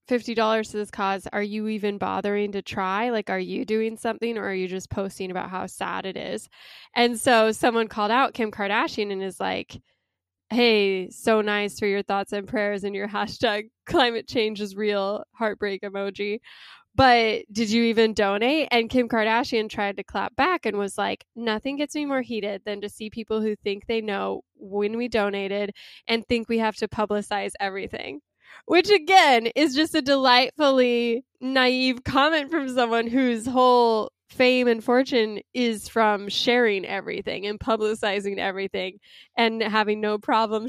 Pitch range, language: 200-240 Hz, English